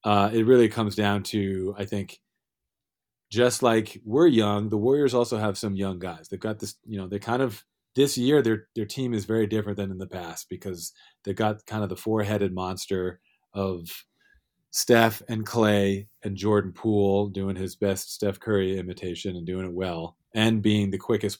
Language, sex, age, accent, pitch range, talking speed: English, male, 30-49, American, 95-115 Hz, 190 wpm